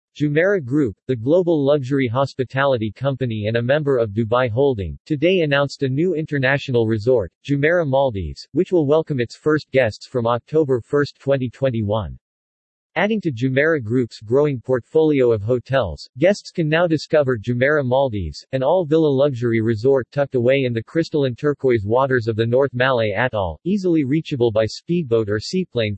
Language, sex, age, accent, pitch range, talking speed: English, male, 50-69, American, 115-150 Hz, 155 wpm